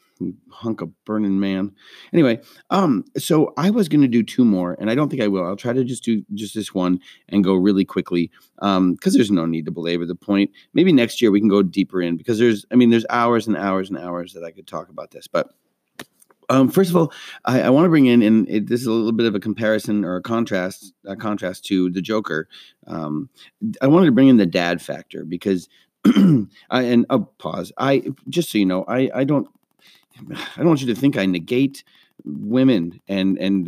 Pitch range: 95-120 Hz